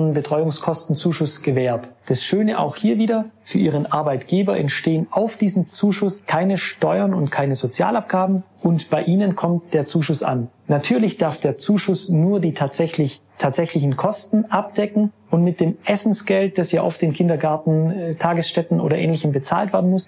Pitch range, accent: 145-195 Hz, German